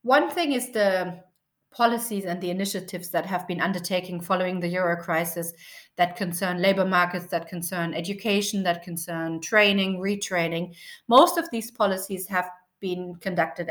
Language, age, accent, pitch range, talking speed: English, 30-49, German, 175-210 Hz, 150 wpm